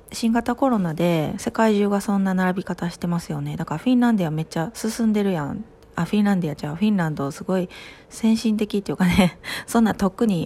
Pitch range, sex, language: 165-210 Hz, female, Japanese